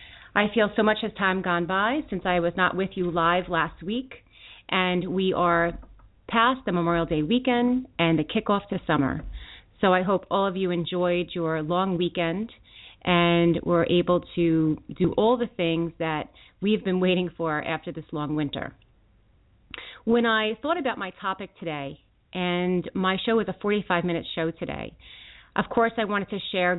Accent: American